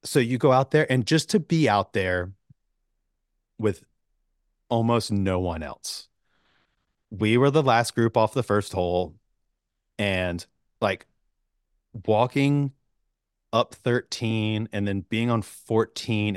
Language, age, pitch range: English, 30-49, 95-120 Hz